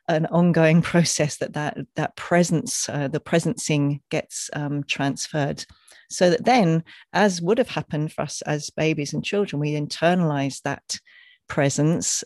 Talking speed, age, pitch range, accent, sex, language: 145 wpm, 40-59, 145-170 Hz, British, female, English